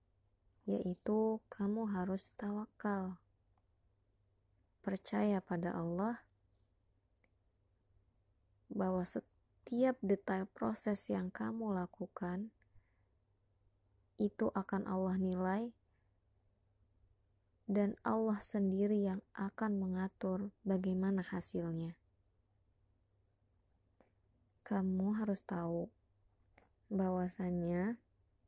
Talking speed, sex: 65 wpm, female